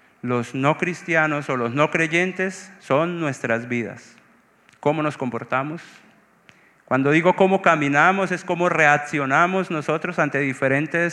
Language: Spanish